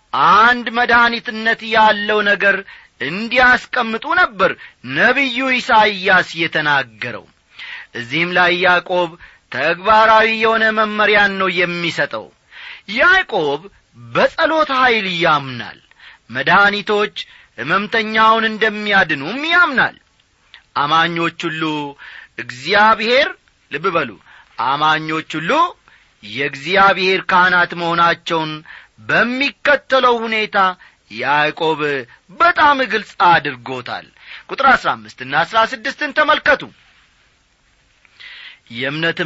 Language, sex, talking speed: Amharic, male, 70 wpm